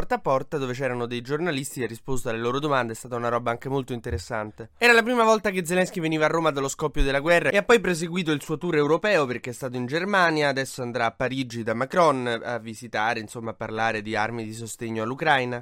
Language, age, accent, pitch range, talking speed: Italian, 20-39, native, 120-160 Hz, 240 wpm